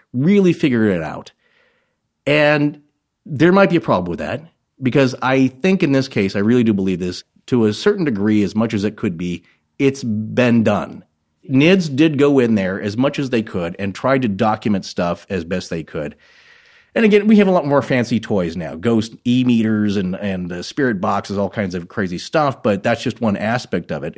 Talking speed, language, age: 205 wpm, English, 30-49